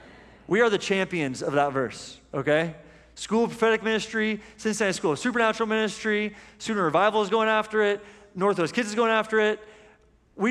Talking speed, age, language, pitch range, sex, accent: 170 wpm, 30-49, English, 150-210 Hz, male, American